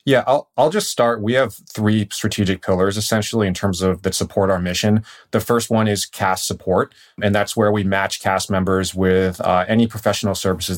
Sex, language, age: male, English, 30-49